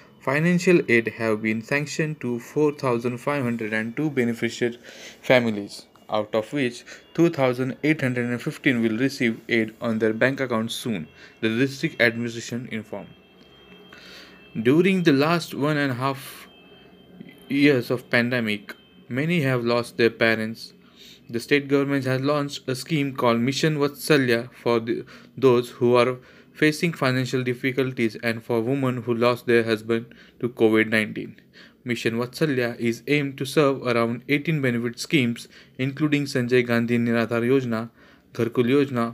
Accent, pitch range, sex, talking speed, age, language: native, 115-140 Hz, male, 130 wpm, 20-39, Marathi